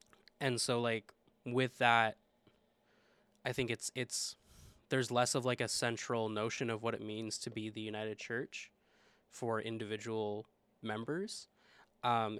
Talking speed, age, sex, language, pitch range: 140 wpm, 10-29, male, English, 110-120 Hz